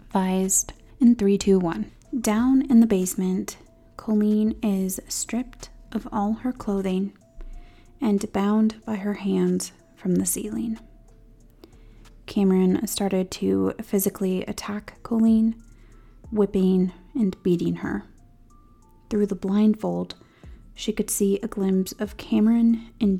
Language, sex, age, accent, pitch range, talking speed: English, female, 30-49, American, 180-215 Hz, 110 wpm